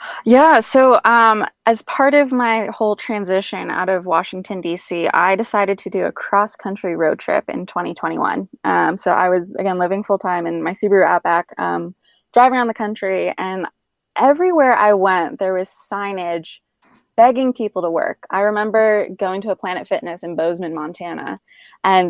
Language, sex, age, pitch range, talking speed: English, female, 20-39, 180-225 Hz, 165 wpm